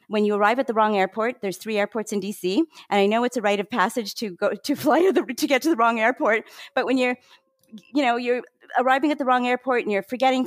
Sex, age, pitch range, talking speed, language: female, 40-59, 195-240 Hz, 250 wpm, English